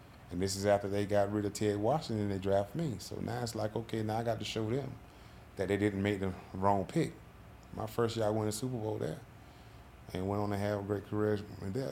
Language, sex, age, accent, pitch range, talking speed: English, male, 30-49, American, 100-115 Hz, 255 wpm